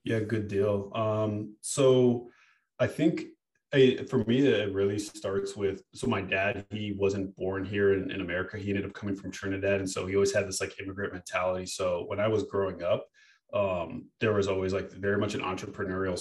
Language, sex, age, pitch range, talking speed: English, male, 20-39, 95-100 Hz, 195 wpm